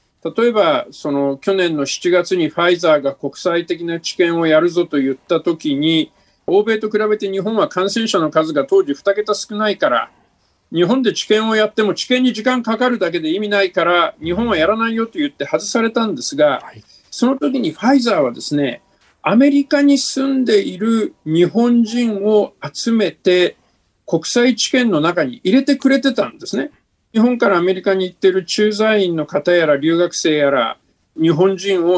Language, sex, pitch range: Japanese, male, 165-230 Hz